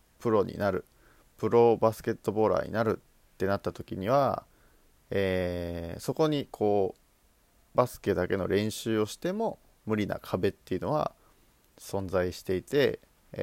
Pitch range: 90-120 Hz